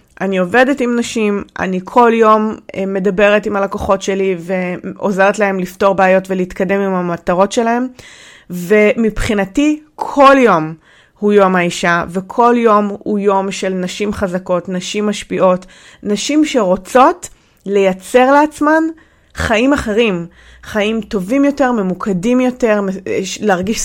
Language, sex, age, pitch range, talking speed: English, female, 30-49, 195-245 Hz, 115 wpm